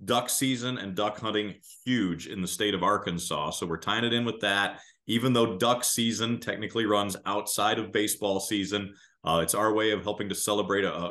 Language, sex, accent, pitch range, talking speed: English, male, American, 90-105 Hz, 205 wpm